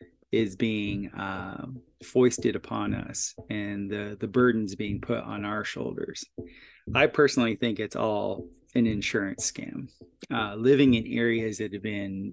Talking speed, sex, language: 145 wpm, male, English